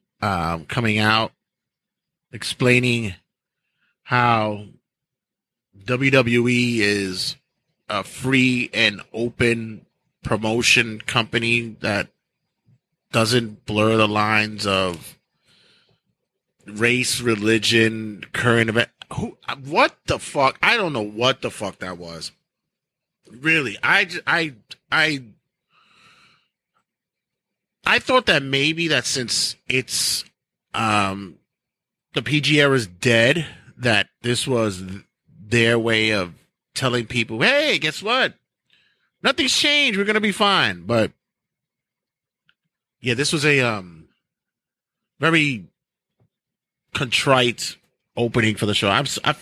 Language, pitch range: English, 105-135 Hz